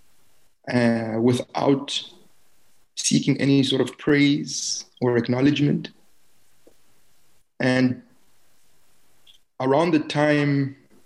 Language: English